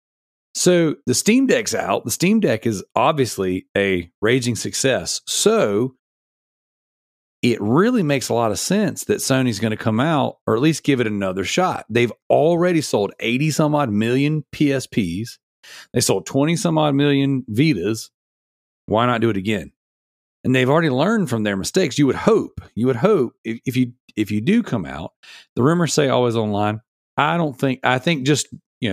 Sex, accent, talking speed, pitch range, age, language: male, American, 170 wpm, 115-155 Hz, 40-59, English